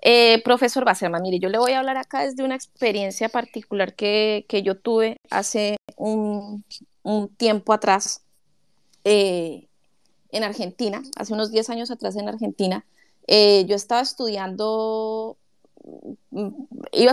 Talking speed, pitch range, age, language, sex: 135 wpm, 205-240 Hz, 20-39, Spanish, female